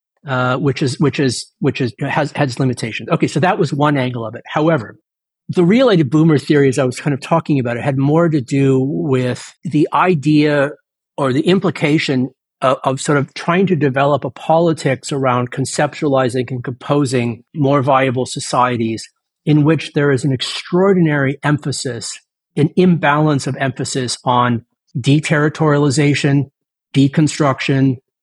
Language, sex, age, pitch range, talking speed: English, male, 50-69, 130-155 Hz, 150 wpm